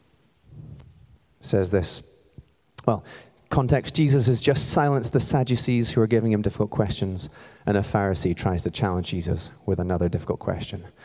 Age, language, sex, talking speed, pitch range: 30-49, English, male, 145 wpm, 105-135 Hz